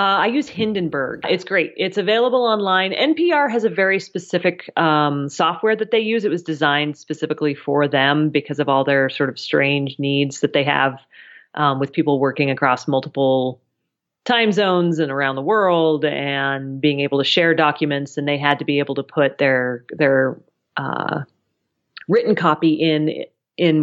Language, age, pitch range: English, 30-49, 140-160 Hz